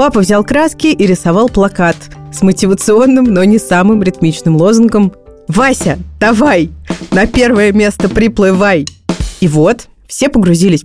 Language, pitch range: Russian, 155-220 Hz